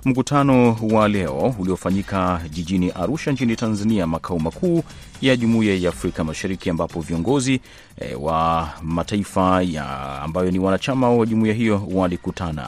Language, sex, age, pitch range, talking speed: Swahili, male, 30-49, 90-120 Hz, 135 wpm